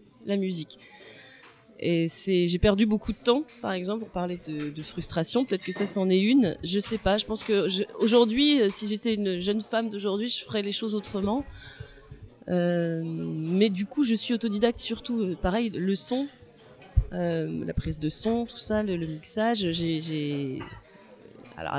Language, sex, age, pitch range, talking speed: French, female, 30-49, 170-225 Hz, 175 wpm